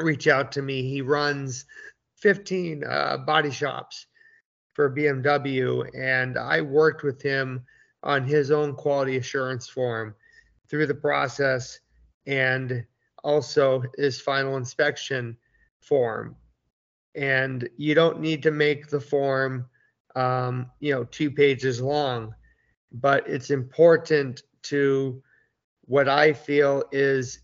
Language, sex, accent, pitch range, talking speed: English, male, American, 130-145 Hz, 115 wpm